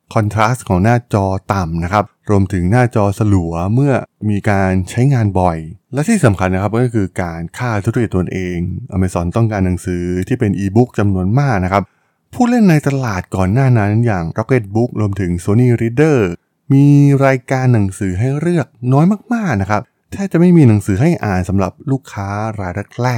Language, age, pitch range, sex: Thai, 20-39, 95-125 Hz, male